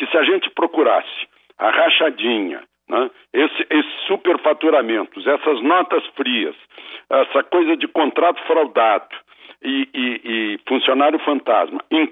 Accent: Brazilian